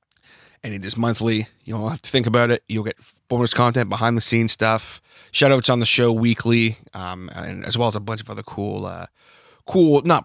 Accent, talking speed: American, 225 wpm